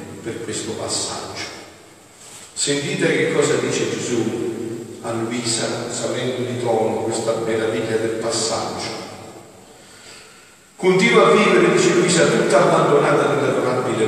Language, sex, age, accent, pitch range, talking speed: Italian, male, 50-69, native, 110-125 Hz, 100 wpm